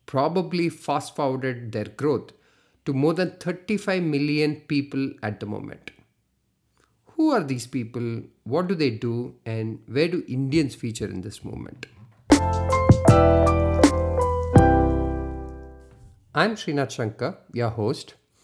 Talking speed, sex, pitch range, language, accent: 110 wpm, male, 105-145 Hz, English, Indian